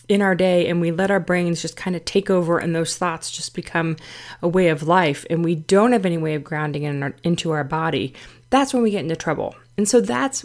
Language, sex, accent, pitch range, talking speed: English, female, American, 155-210 Hz, 255 wpm